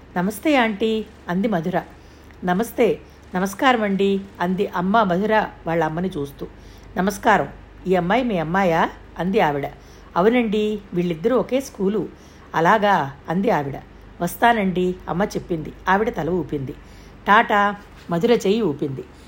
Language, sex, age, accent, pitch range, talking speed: Telugu, female, 60-79, native, 175-230 Hz, 110 wpm